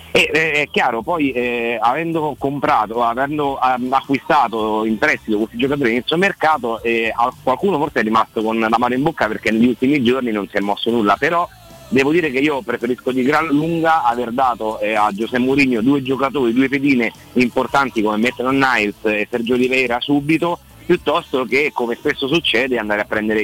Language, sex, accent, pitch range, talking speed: Italian, male, native, 115-150 Hz, 185 wpm